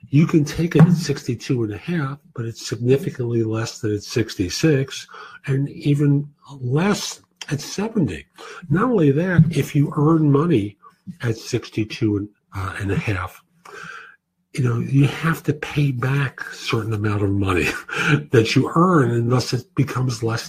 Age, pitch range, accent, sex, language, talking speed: 50-69, 125-160 Hz, American, male, English, 160 wpm